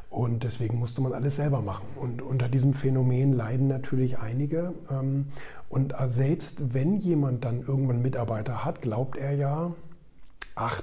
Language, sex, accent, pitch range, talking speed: German, male, German, 120-145 Hz, 150 wpm